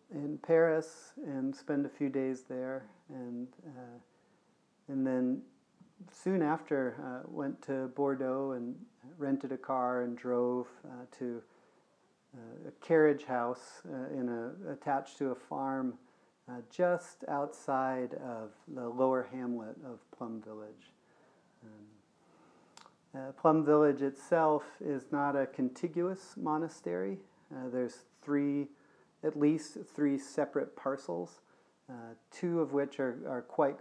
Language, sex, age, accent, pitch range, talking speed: English, male, 40-59, American, 120-150 Hz, 130 wpm